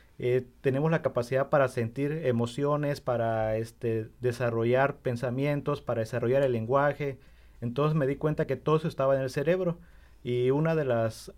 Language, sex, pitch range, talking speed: English, male, 120-155 Hz, 160 wpm